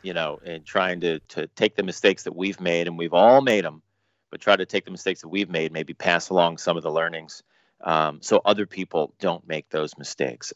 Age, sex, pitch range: 30-49, male, 85-105 Hz